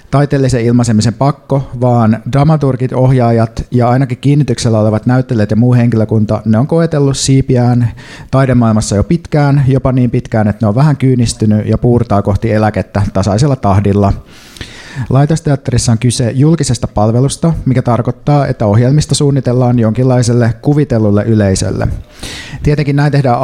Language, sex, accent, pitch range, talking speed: Finnish, male, native, 110-135 Hz, 130 wpm